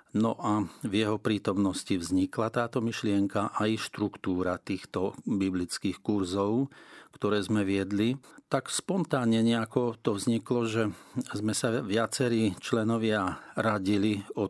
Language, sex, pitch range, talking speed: Slovak, male, 100-115 Hz, 115 wpm